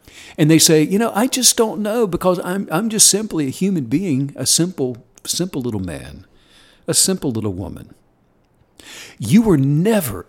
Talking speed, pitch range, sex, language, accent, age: 170 wpm, 120-175 Hz, male, English, American, 60-79